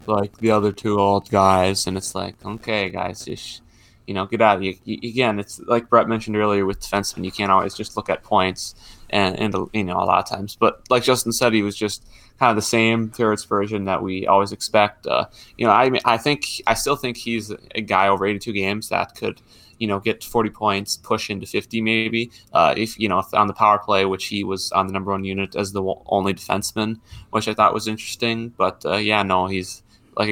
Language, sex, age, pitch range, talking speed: English, male, 20-39, 95-110 Hz, 230 wpm